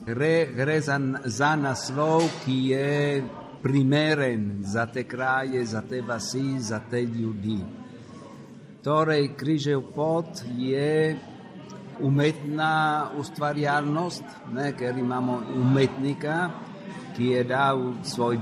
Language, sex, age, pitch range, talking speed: Italian, male, 60-79, 125-155 Hz, 95 wpm